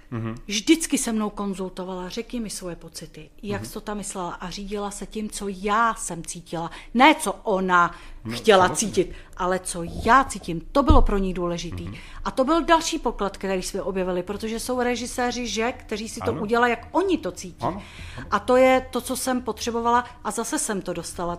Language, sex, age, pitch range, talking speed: Czech, female, 40-59, 190-245 Hz, 190 wpm